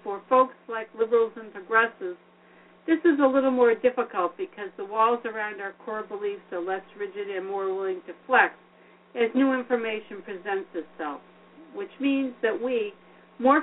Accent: American